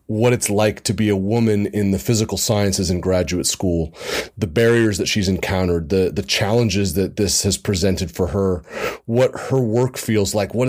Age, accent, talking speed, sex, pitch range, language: 30-49, American, 190 wpm, male, 95-115 Hz, English